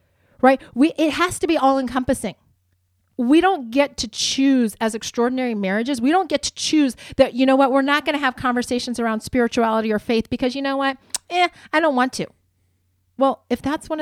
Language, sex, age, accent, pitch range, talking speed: English, female, 30-49, American, 200-275 Hz, 205 wpm